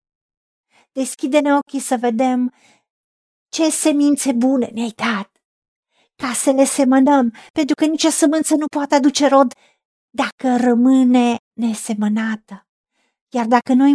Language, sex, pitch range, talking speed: Romanian, female, 235-290 Hz, 115 wpm